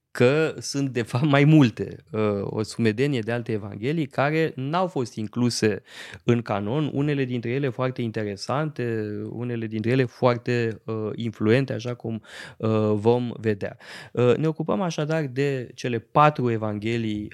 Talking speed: 140 wpm